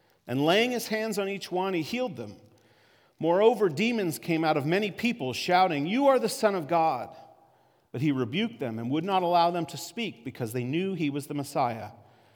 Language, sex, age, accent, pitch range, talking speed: English, male, 40-59, American, 125-195 Hz, 205 wpm